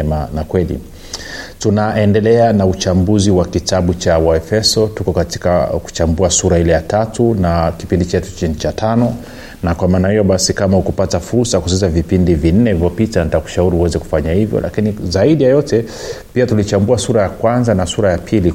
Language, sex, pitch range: Swahili, male, 85-105 Hz